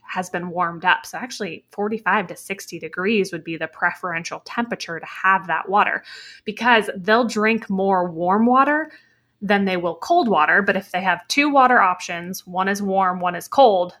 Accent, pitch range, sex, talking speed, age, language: American, 175-220 Hz, female, 185 wpm, 20-39, English